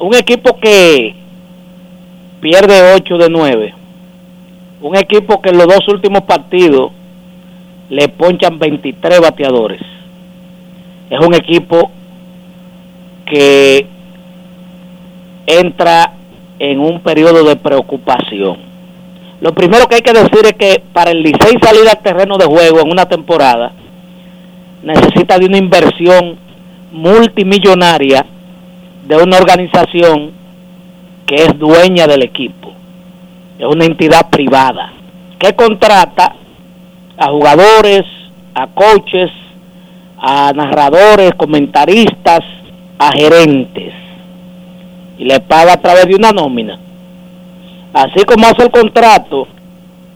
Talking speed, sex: 105 wpm, male